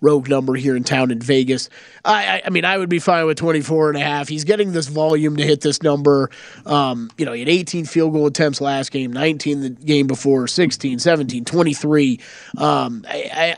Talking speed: 205 wpm